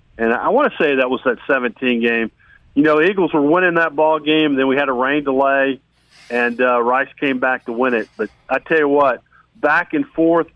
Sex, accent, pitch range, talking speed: male, American, 120-150 Hz, 225 wpm